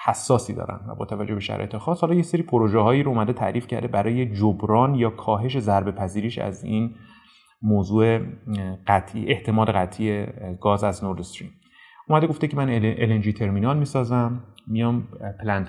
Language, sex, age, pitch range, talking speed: Persian, male, 30-49, 105-130 Hz, 160 wpm